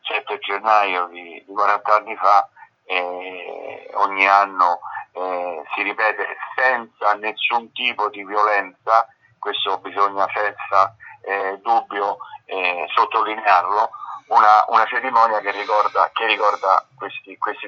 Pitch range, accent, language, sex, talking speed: 110-130 Hz, native, Italian, male, 105 wpm